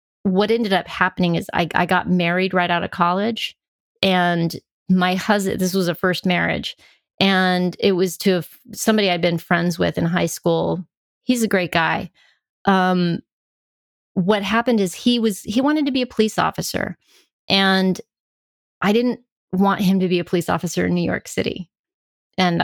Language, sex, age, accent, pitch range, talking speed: English, female, 30-49, American, 175-210 Hz, 170 wpm